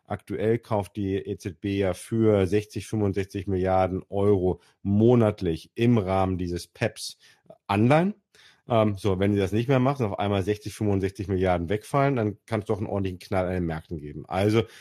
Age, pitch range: 40-59, 95-115 Hz